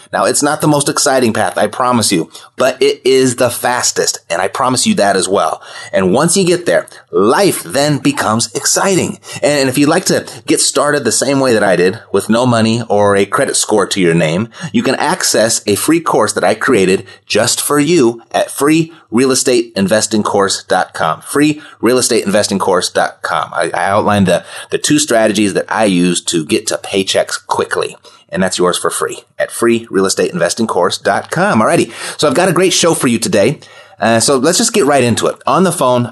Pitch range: 110-150 Hz